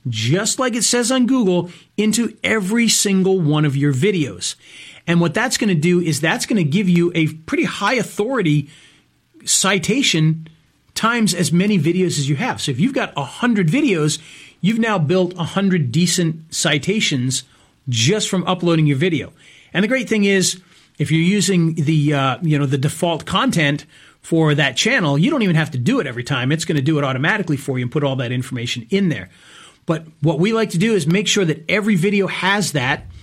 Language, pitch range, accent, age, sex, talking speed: English, 150-195 Hz, American, 40-59, male, 200 wpm